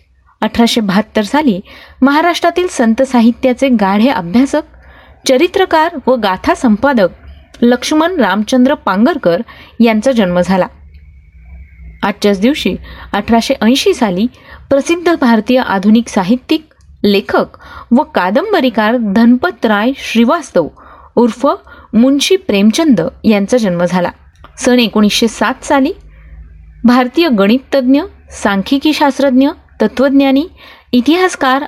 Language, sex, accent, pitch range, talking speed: Marathi, female, native, 205-275 Hz, 85 wpm